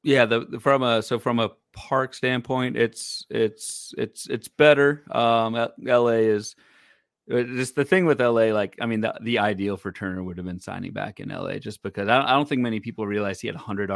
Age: 30-49